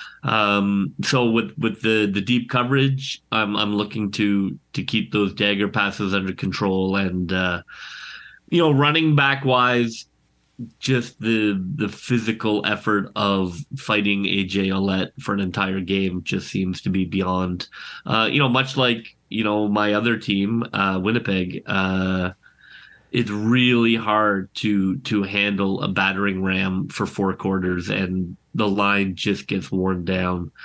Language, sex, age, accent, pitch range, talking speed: English, male, 30-49, American, 95-110 Hz, 150 wpm